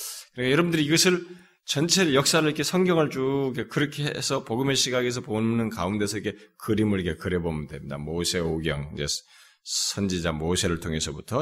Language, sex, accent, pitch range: Korean, male, native, 80-135 Hz